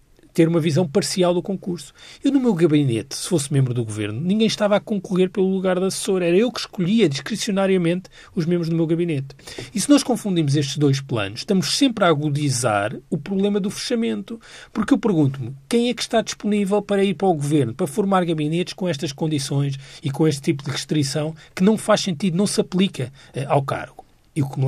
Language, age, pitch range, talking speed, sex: Portuguese, 40-59, 140-200 Hz, 210 wpm, male